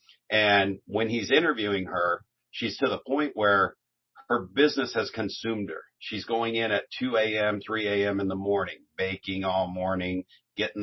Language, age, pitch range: English, 50-69, 95-115 Hz